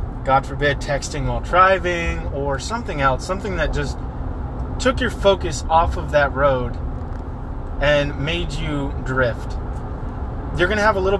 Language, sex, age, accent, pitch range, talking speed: English, male, 20-39, American, 90-150 Hz, 150 wpm